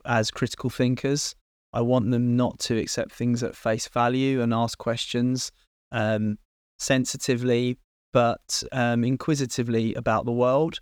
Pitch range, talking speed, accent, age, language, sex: 120-140 Hz, 135 wpm, British, 20-39, English, male